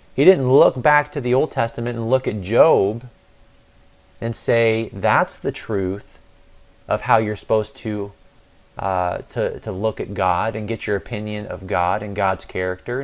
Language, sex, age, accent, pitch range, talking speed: English, male, 30-49, American, 105-135 Hz, 170 wpm